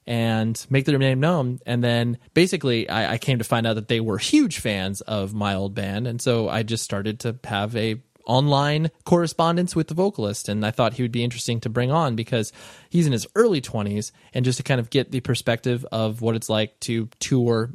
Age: 20-39